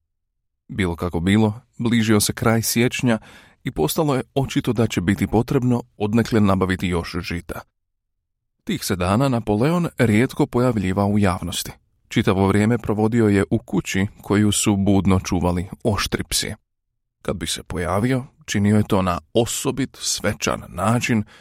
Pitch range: 95-120 Hz